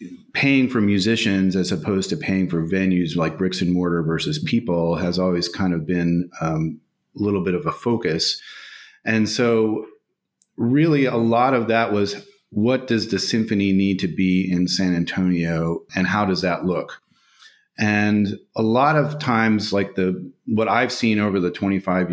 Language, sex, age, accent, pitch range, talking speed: English, male, 30-49, American, 90-110 Hz, 170 wpm